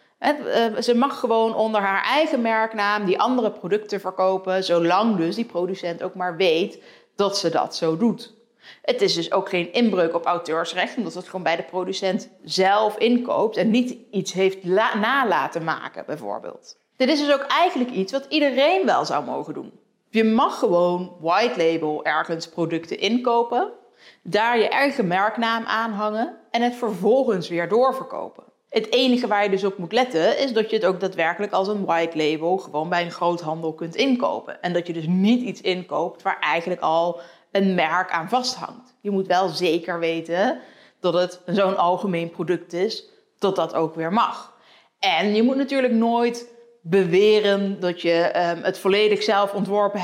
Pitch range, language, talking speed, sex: 180-235 Hz, Dutch, 170 wpm, female